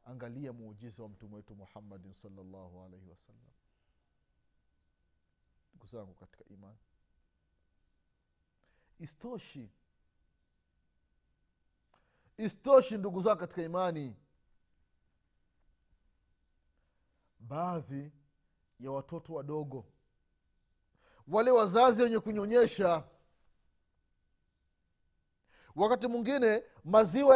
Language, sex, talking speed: Swahili, male, 60 wpm